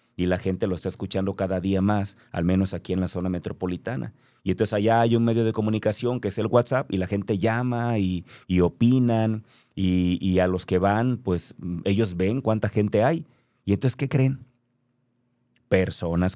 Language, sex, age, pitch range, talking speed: Spanish, male, 30-49, 95-125 Hz, 190 wpm